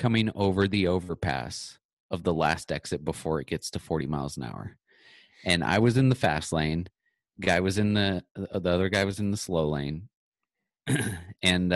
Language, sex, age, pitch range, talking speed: English, male, 30-49, 80-100 Hz, 185 wpm